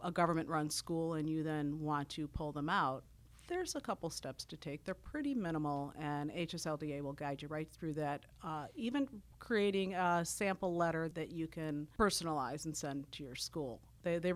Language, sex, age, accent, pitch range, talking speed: English, female, 50-69, American, 145-175 Hz, 190 wpm